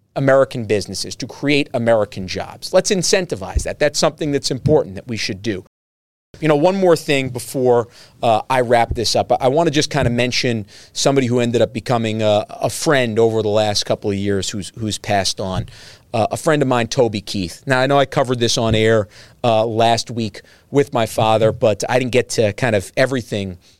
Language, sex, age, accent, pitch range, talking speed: English, male, 40-59, American, 105-135 Hz, 205 wpm